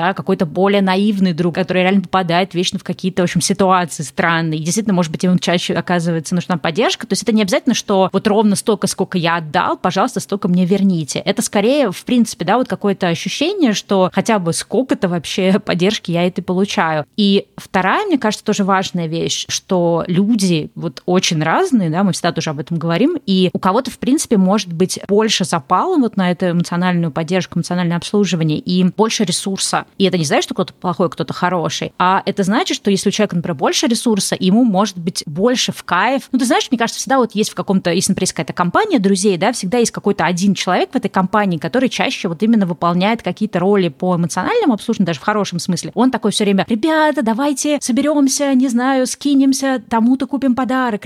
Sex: female